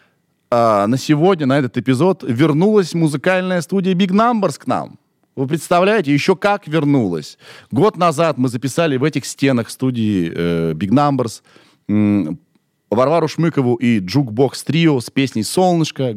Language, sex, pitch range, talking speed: Russian, male, 100-160 Hz, 140 wpm